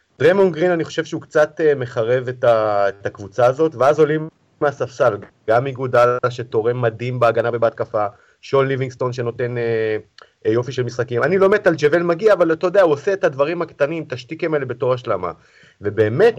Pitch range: 115-155 Hz